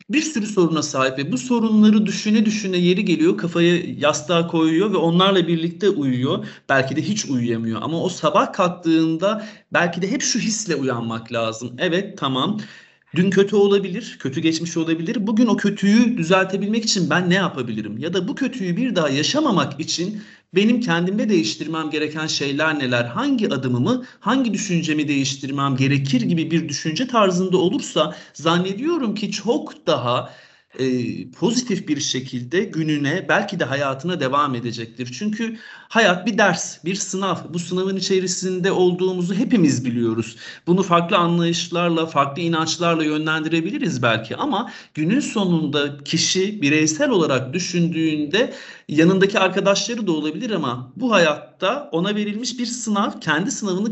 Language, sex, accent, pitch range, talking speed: Turkish, male, native, 150-200 Hz, 140 wpm